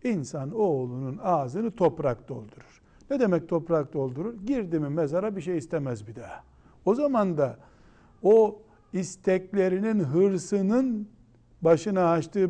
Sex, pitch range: male, 130-190 Hz